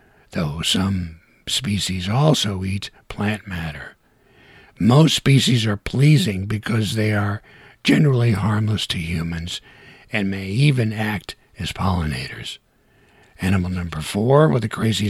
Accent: American